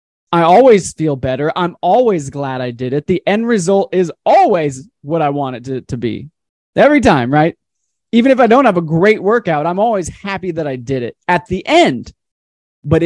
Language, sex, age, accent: English, male, 20-39, American